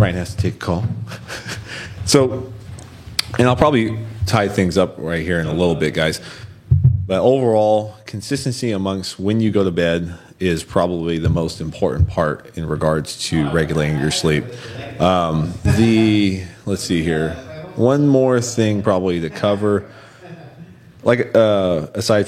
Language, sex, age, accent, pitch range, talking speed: English, male, 30-49, American, 85-110 Hz, 150 wpm